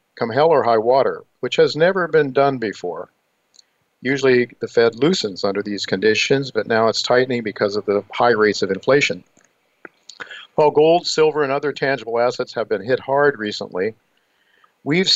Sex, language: male, English